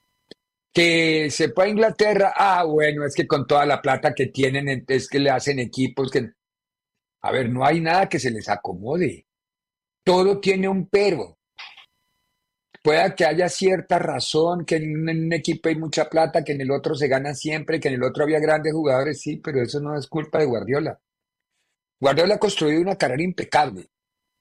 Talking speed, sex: 180 wpm, male